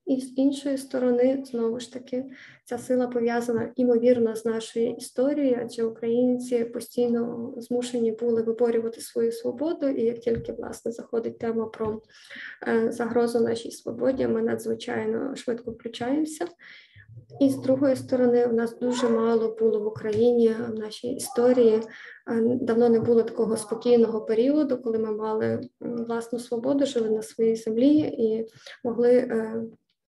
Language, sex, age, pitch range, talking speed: Ukrainian, female, 20-39, 230-250 Hz, 135 wpm